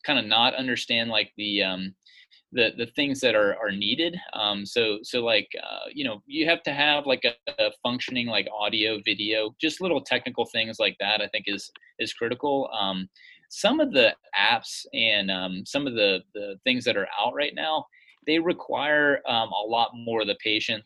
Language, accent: English, American